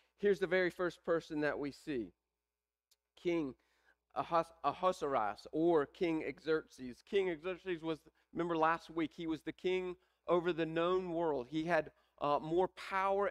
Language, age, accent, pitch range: English, 40-59, American, 160-190 Hz